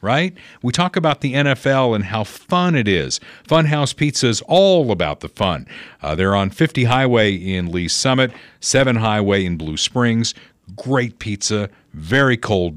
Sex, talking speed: male, 170 wpm